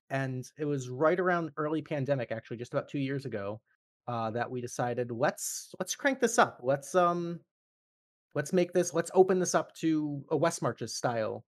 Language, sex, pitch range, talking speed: English, male, 125-160 Hz, 185 wpm